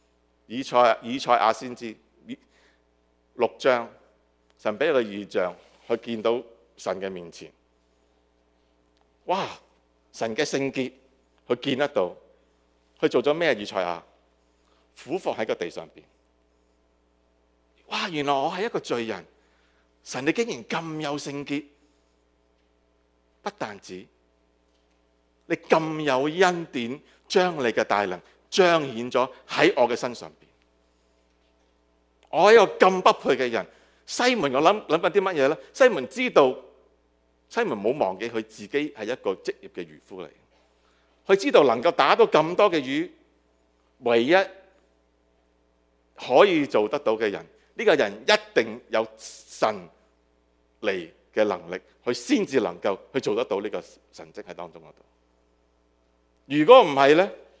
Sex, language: male, English